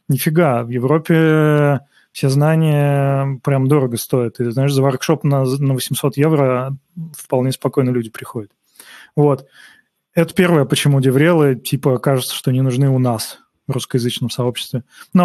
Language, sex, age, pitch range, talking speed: Russian, male, 20-39, 130-160 Hz, 140 wpm